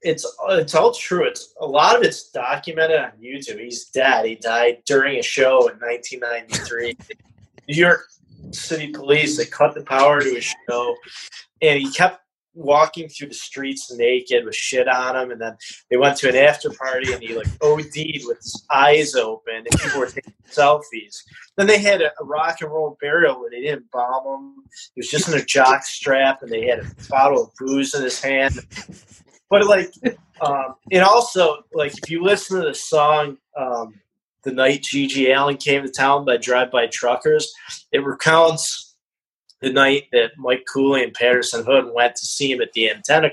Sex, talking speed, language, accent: male, 185 wpm, English, American